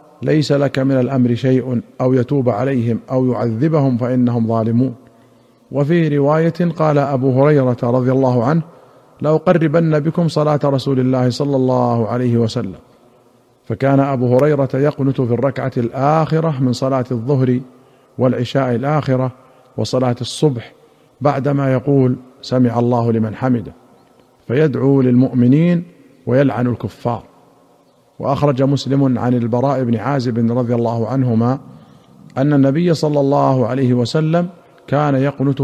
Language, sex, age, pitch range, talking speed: Arabic, male, 50-69, 125-145 Hz, 120 wpm